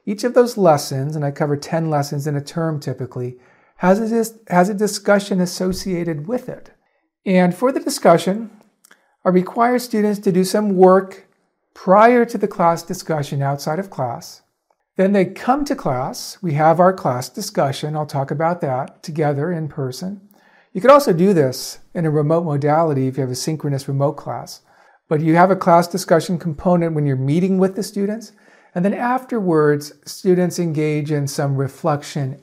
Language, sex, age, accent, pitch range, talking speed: English, male, 50-69, American, 150-200 Hz, 170 wpm